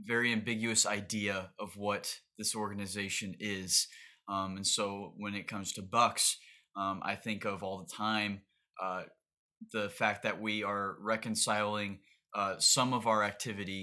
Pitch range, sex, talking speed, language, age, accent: 100-115 Hz, male, 150 wpm, English, 20-39, American